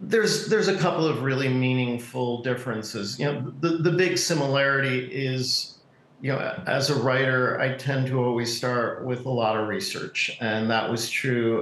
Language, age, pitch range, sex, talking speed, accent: English, 50-69, 110-130 Hz, male, 175 wpm, American